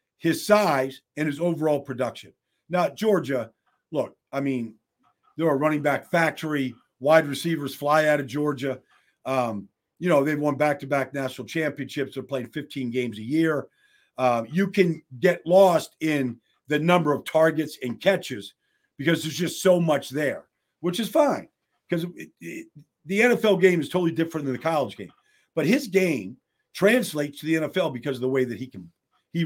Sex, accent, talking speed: male, American, 170 wpm